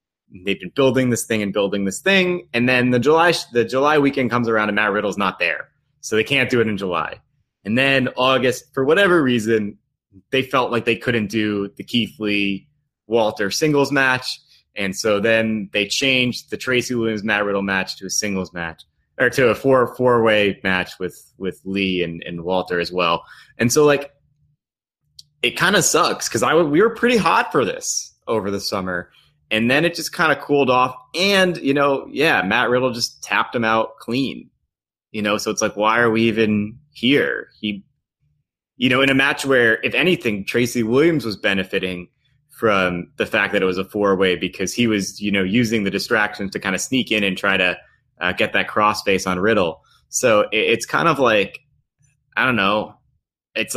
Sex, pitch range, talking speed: male, 100-135 Hz, 200 wpm